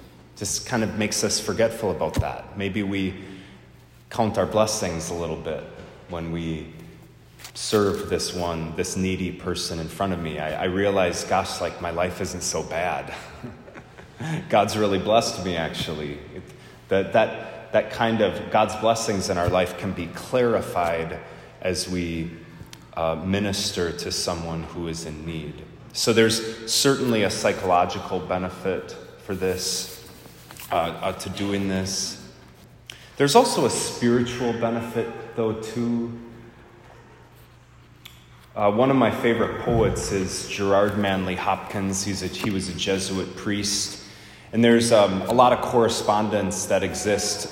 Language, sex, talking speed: English, male, 145 wpm